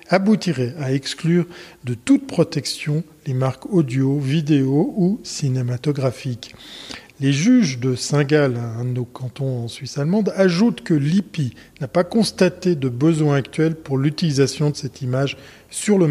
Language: French